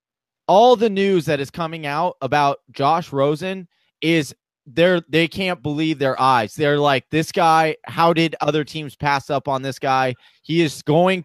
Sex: male